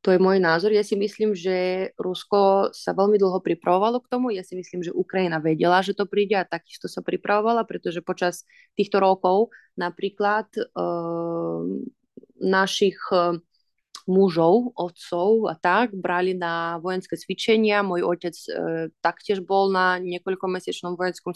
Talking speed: 140 wpm